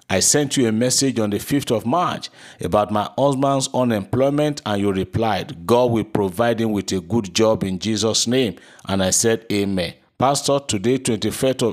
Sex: male